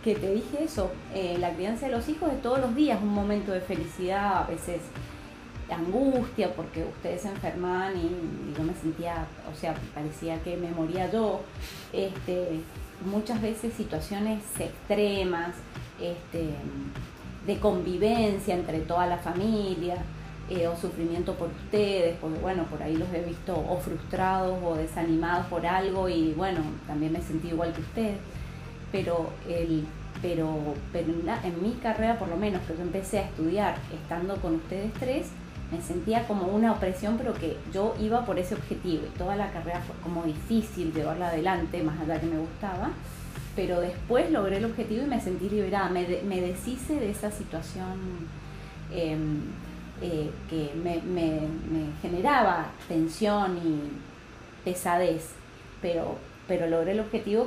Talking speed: 160 wpm